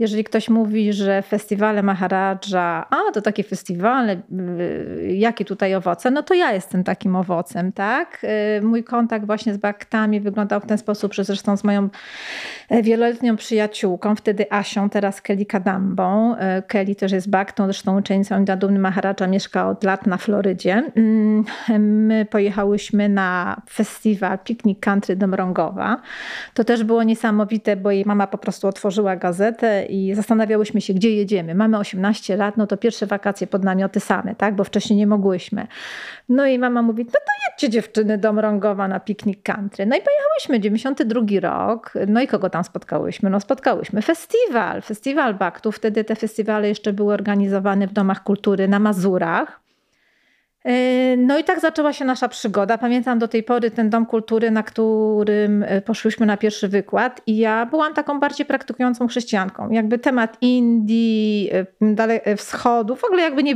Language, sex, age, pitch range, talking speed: Polish, female, 30-49, 200-230 Hz, 160 wpm